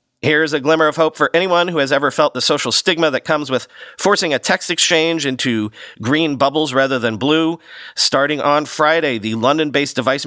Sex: male